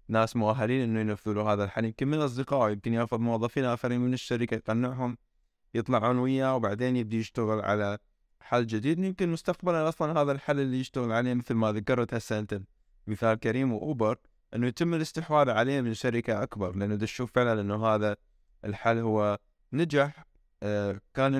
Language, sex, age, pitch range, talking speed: English, male, 20-39, 105-125 Hz, 155 wpm